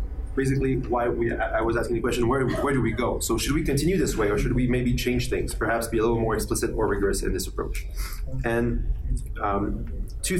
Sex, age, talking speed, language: male, 30-49, 225 wpm, English